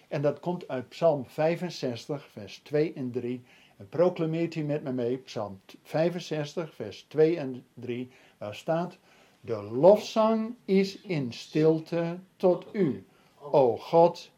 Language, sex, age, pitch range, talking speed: Dutch, male, 60-79, 130-170 Hz, 140 wpm